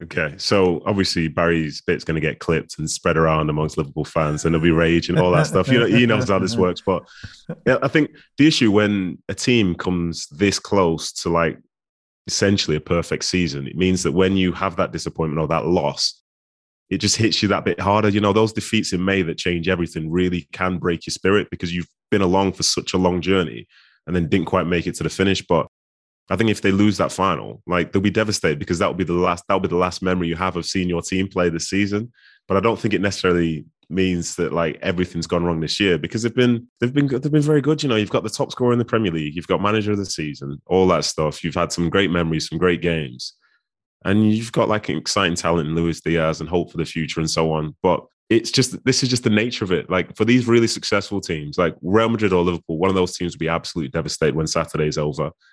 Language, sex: English, male